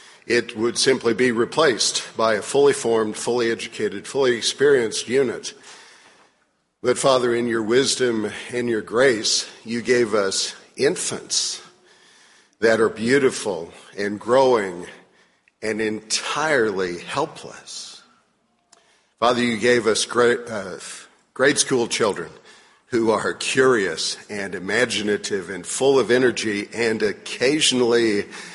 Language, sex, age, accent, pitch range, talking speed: English, male, 50-69, American, 110-130 Hz, 110 wpm